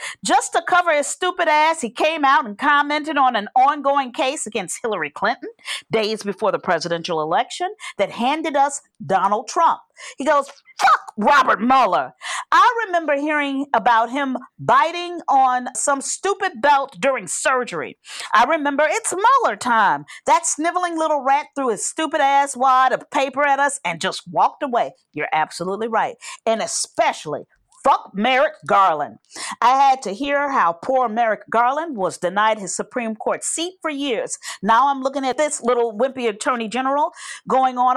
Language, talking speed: English, 160 wpm